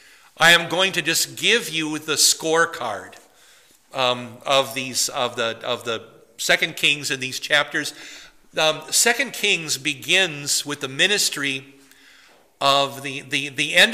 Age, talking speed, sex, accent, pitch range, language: 50-69, 140 wpm, male, American, 135-170 Hz, English